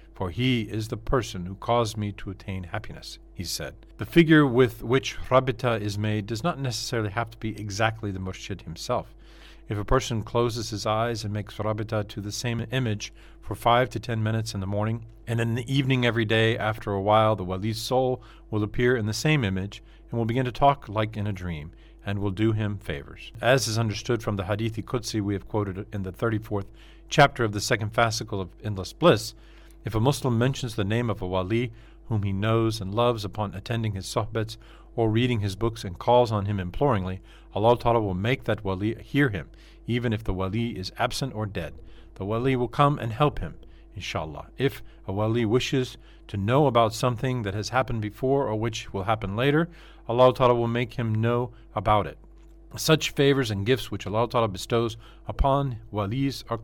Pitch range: 105-125 Hz